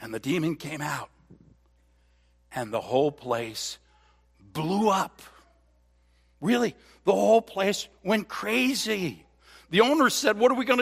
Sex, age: male, 60-79